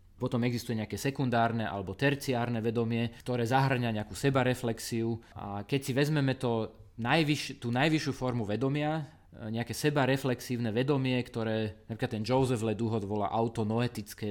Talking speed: 130 wpm